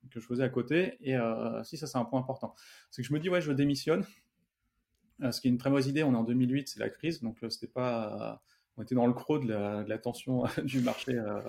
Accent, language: French, French